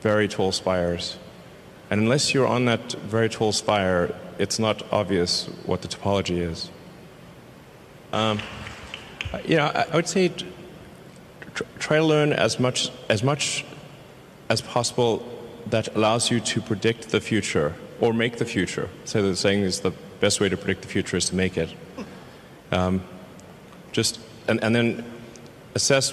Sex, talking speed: male, 160 wpm